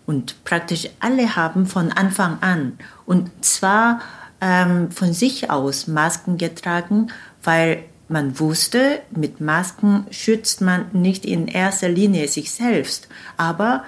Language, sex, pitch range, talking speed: German, female, 165-225 Hz, 125 wpm